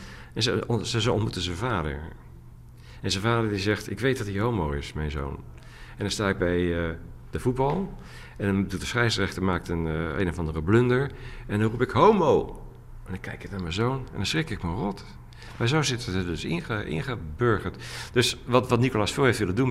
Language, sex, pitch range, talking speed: Dutch, male, 90-125 Hz, 220 wpm